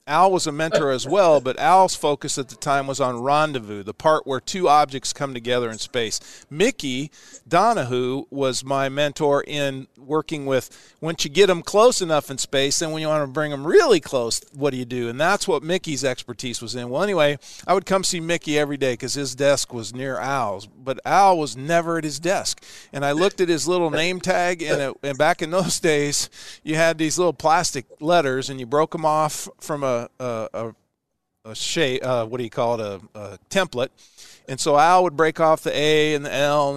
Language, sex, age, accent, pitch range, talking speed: English, male, 50-69, American, 135-170 Hz, 220 wpm